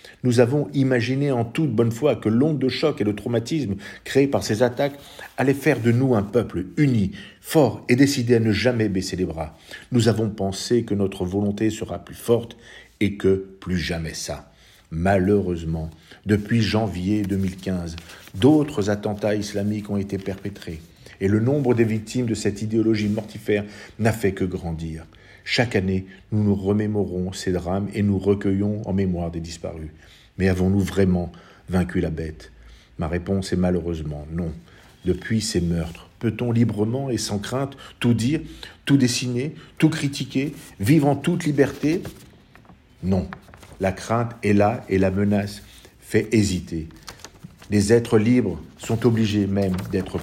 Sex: male